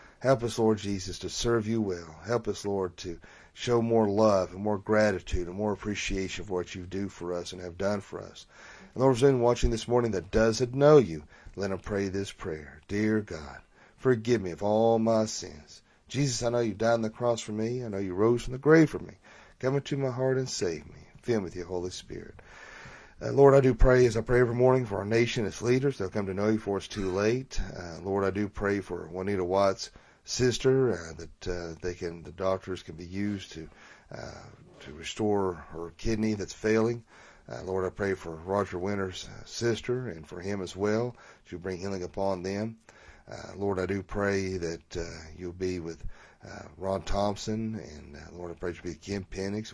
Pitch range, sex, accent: 90-115 Hz, male, American